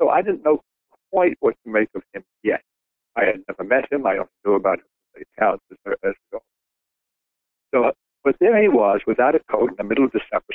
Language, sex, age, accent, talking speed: English, male, 60-79, American, 195 wpm